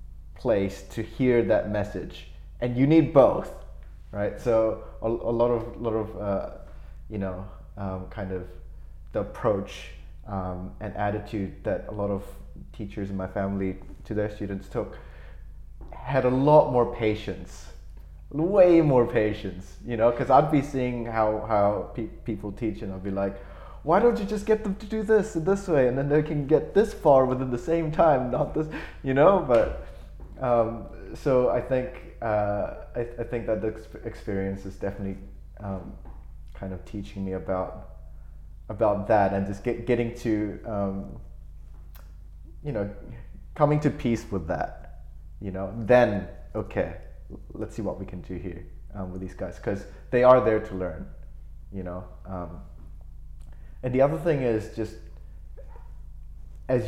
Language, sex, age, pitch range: English, male, 20-39, 80-120 Hz